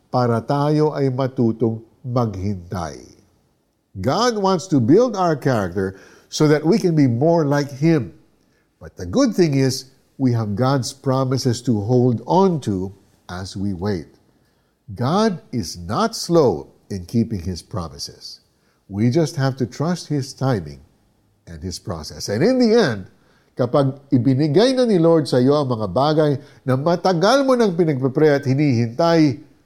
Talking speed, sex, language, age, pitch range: 145 wpm, male, Filipino, 60-79, 110-155 Hz